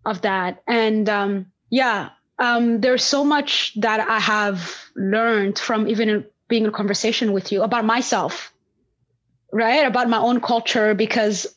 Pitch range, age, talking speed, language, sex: 215-260 Hz, 20-39, 145 wpm, English, female